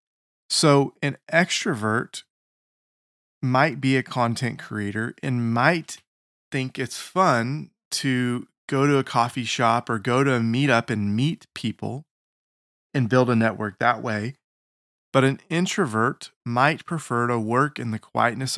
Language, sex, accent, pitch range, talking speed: English, male, American, 110-140 Hz, 140 wpm